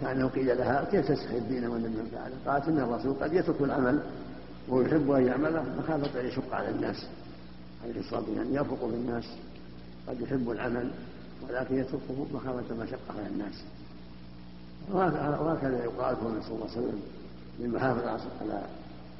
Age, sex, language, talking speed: 50-69, male, Arabic, 150 wpm